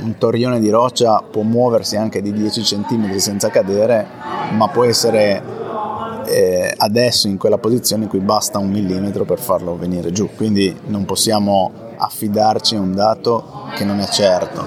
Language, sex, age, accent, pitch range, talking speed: Italian, male, 20-39, native, 100-115 Hz, 165 wpm